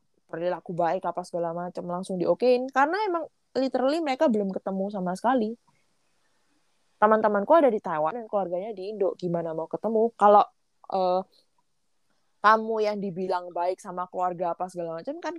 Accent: native